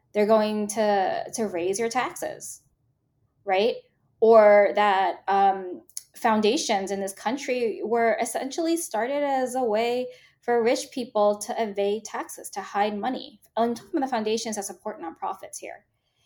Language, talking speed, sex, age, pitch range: English, 145 wpm, female, 10-29, 205-255 Hz